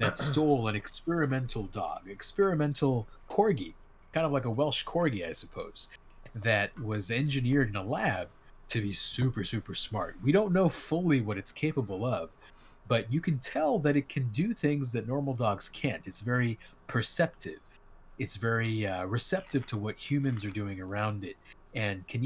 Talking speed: 170 wpm